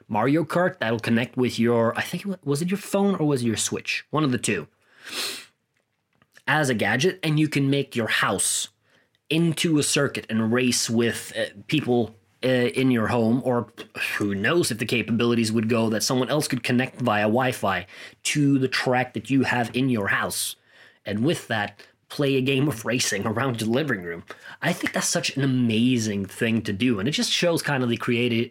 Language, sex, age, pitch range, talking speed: English, male, 30-49, 120-155 Hz, 195 wpm